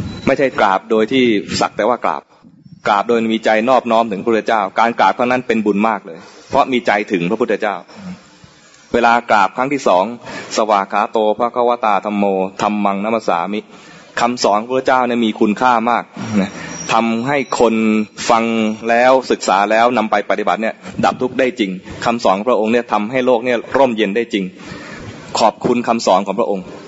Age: 20-39